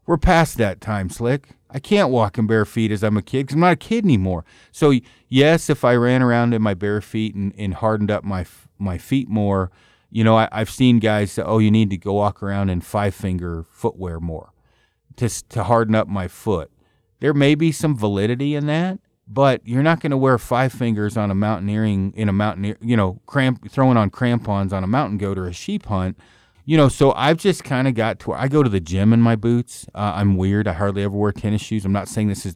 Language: English